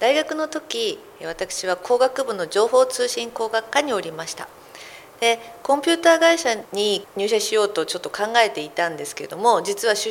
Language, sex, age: Japanese, female, 50-69